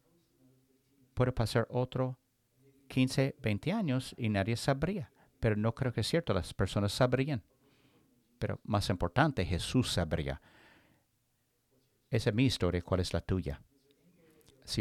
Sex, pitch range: male, 100-135 Hz